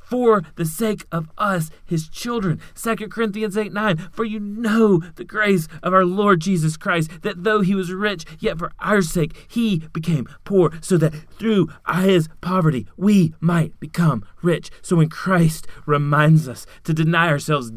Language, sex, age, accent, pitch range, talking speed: English, male, 30-49, American, 155-205 Hz, 170 wpm